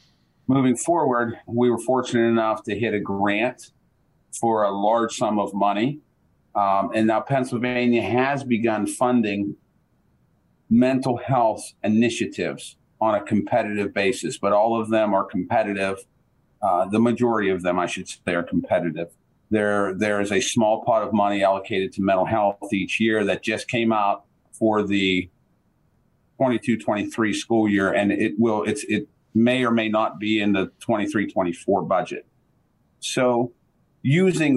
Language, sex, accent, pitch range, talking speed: English, male, American, 100-120 Hz, 150 wpm